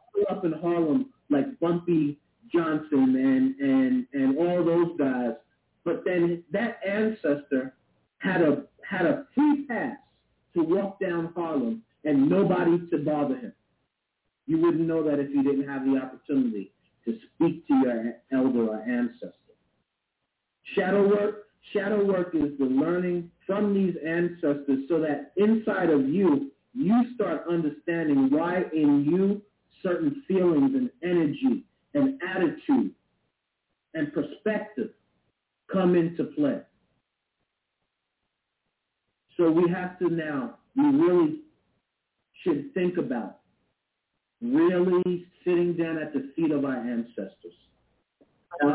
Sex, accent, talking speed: male, American, 125 wpm